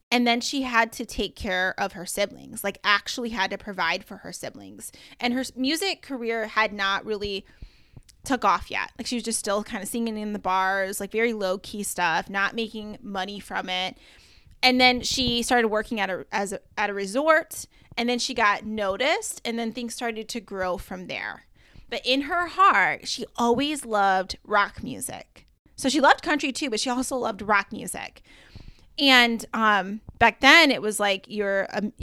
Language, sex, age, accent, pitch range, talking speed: English, female, 20-39, American, 205-250 Hz, 190 wpm